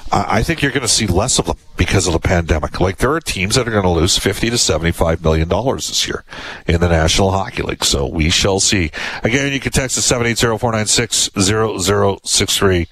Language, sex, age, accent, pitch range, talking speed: English, male, 50-69, American, 90-120 Hz, 205 wpm